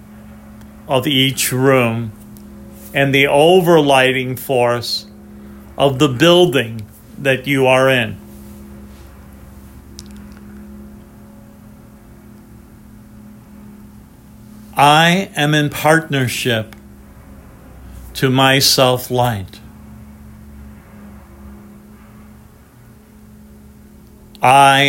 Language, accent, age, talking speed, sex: English, American, 50-69, 55 wpm, male